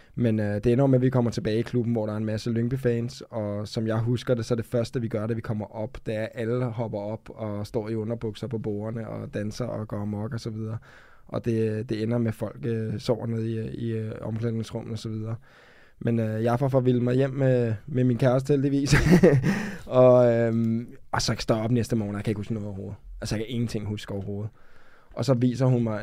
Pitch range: 110-125 Hz